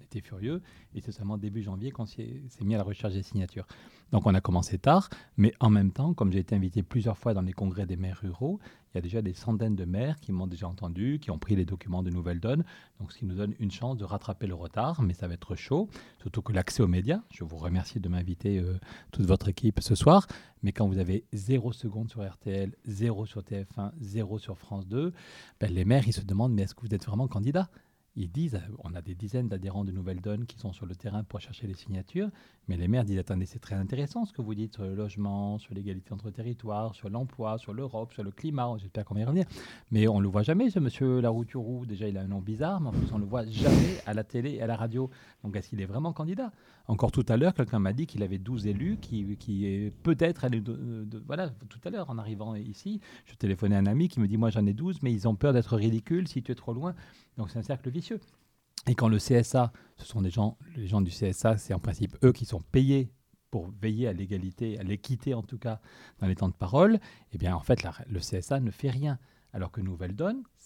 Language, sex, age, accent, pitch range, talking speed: French, male, 40-59, French, 100-125 Hz, 260 wpm